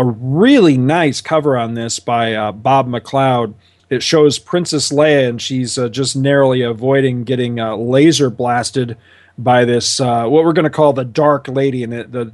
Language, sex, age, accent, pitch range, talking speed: English, male, 40-59, American, 115-155 Hz, 185 wpm